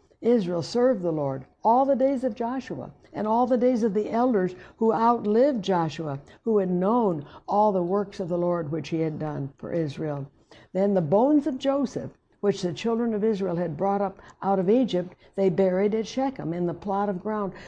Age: 60-79